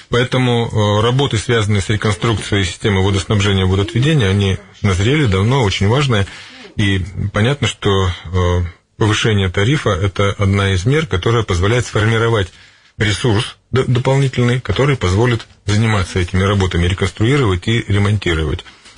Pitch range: 95-115 Hz